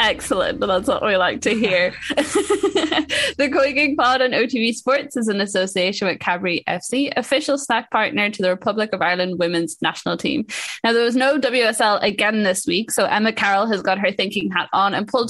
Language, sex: English, female